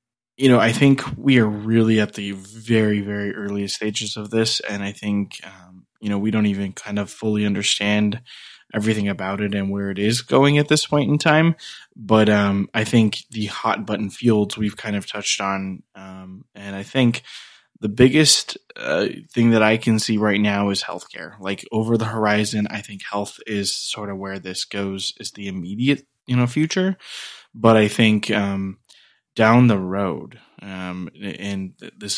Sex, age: male, 20-39